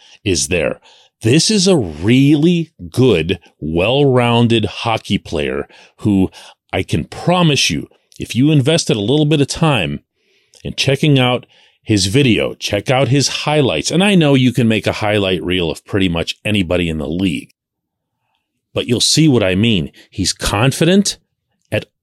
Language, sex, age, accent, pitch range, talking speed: English, male, 40-59, American, 105-150 Hz, 155 wpm